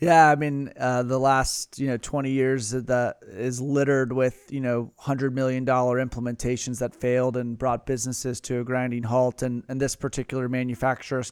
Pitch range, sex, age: 125-135 Hz, male, 30-49